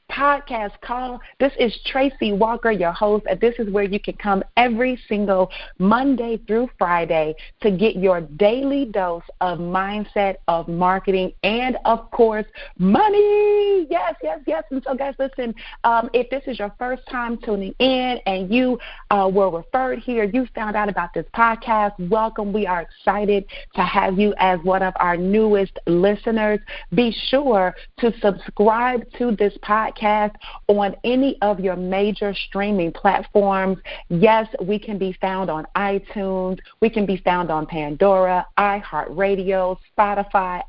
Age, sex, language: 30-49, female, English